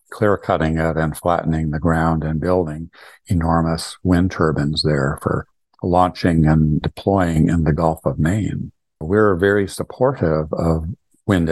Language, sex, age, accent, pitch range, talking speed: English, male, 50-69, American, 80-100 Hz, 140 wpm